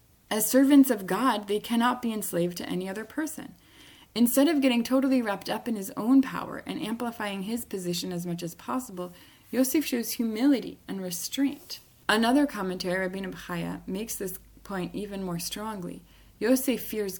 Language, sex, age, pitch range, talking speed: English, female, 20-39, 185-255 Hz, 165 wpm